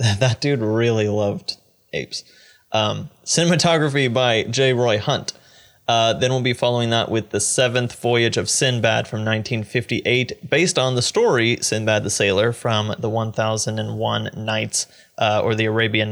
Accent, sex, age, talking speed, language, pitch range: American, male, 20-39, 150 wpm, English, 110-135 Hz